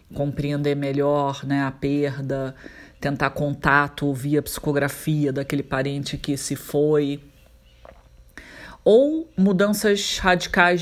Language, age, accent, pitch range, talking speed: Portuguese, 40-59, Brazilian, 140-165 Hz, 95 wpm